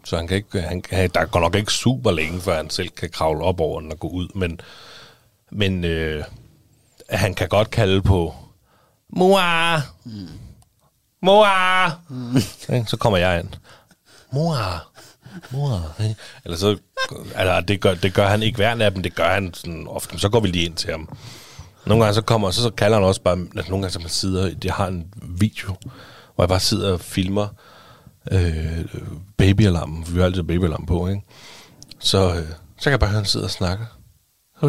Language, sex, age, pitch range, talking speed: Danish, male, 30-49, 90-120 Hz, 185 wpm